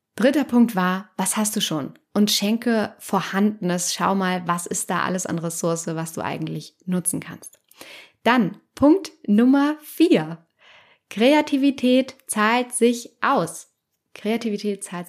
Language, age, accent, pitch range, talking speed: German, 10-29, German, 175-215 Hz, 130 wpm